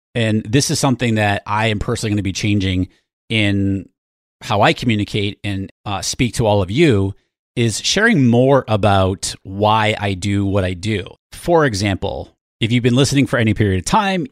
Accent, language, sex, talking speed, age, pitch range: American, English, male, 185 wpm, 30-49, 95-120 Hz